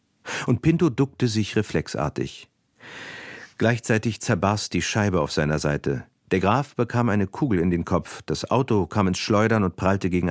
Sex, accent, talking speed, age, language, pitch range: male, German, 165 wpm, 50-69, German, 80-105 Hz